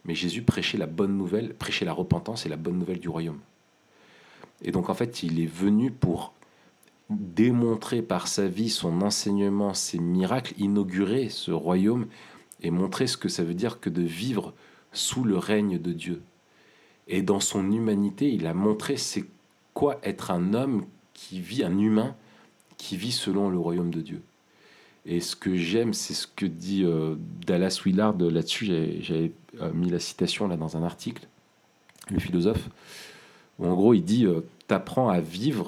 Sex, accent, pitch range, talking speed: male, French, 85-110 Hz, 170 wpm